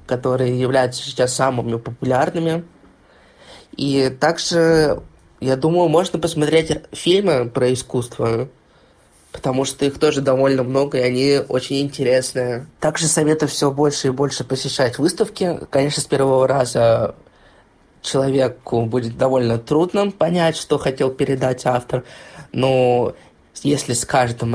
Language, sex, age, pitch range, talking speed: Russian, male, 20-39, 125-145 Hz, 120 wpm